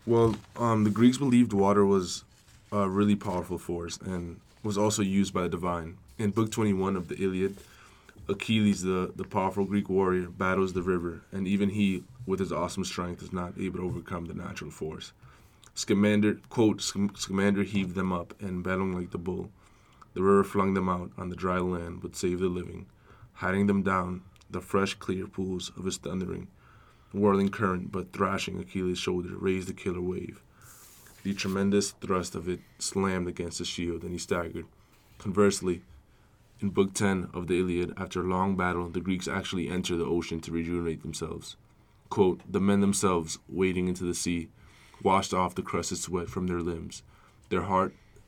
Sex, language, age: male, English, 20-39